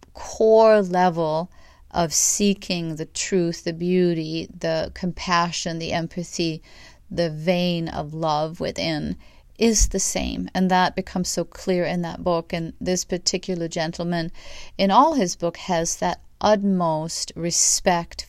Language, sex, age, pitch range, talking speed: English, female, 40-59, 165-185 Hz, 130 wpm